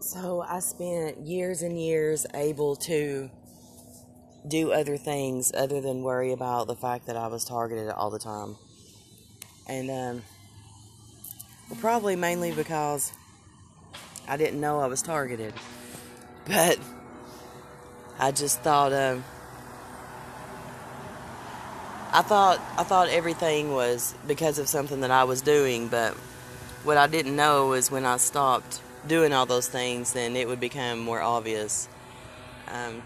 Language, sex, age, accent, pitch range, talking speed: English, female, 30-49, American, 115-140 Hz, 135 wpm